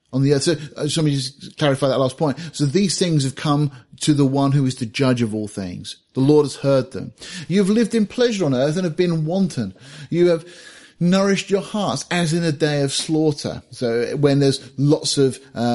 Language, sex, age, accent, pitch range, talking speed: English, male, 30-49, British, 125-155 Hz, 210 wpm